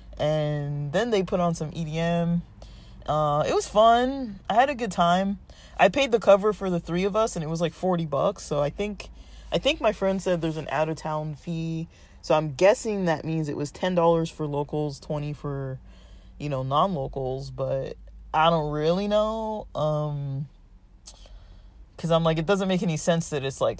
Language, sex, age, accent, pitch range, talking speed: English, male, 20-39, American, 135-175 Hz, 190 wpm